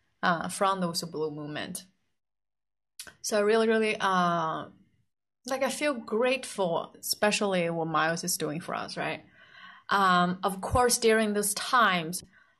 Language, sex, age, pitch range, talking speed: English, female, 20-39, 175-215 Hz, 135 wpm